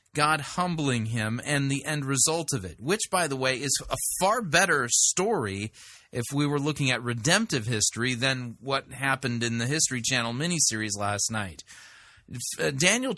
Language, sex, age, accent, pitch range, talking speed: English, male, 30-49, American, 115-155 Hz, 165 wpm